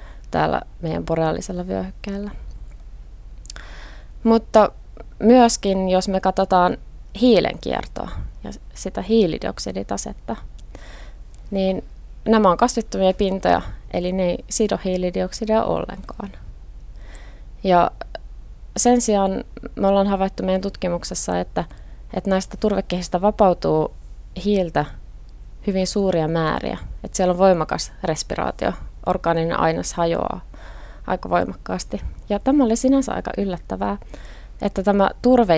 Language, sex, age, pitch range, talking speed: Finnish, female, 20-39, 165-200 Hz, 105 wpm